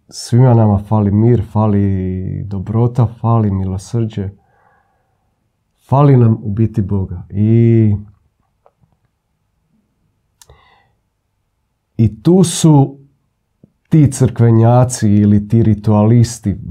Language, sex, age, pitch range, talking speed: Croatian, male, 40-59, 105-125 Hz, 80 wpm